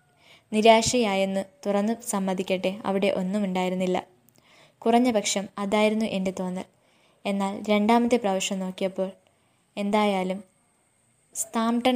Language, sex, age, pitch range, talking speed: Malayalam, female, 20-39, 195-220 Hz, 80 wpm